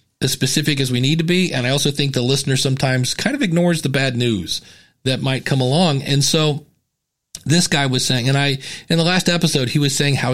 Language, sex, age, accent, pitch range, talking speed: English, male, 40-59, American, 120-155 Hz, 230 wpm